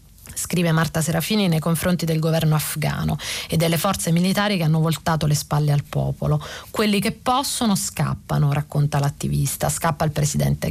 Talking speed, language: 155 wpm, Italian